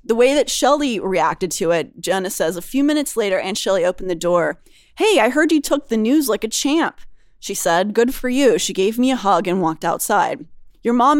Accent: American